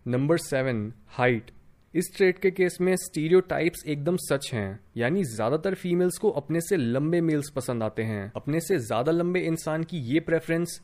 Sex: male